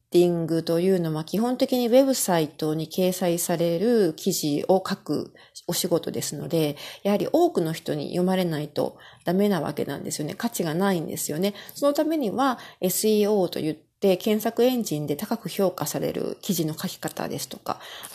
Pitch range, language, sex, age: 165-240 Hz, Japanese, female, 40-59